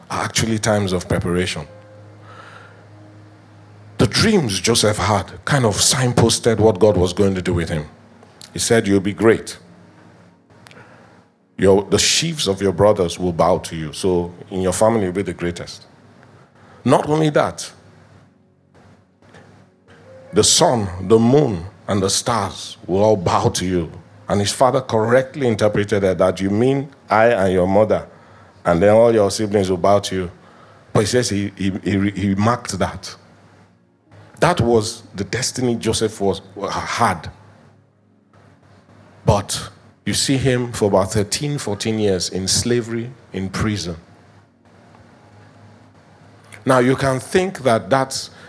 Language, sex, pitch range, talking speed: English, male, 95-115 Hz, 140 wpm